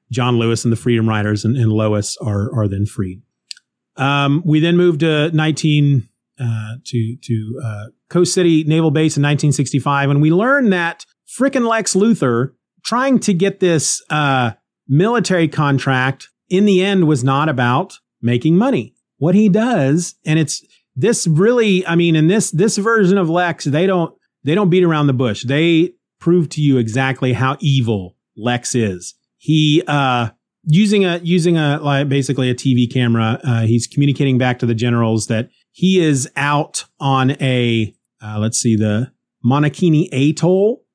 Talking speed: 165 wpm